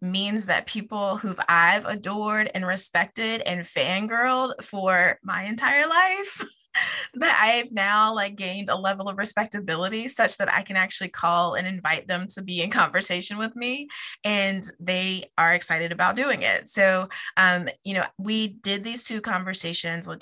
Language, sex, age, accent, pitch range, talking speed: English, female, 20-39, American, 175-210 Hz, 165 wpm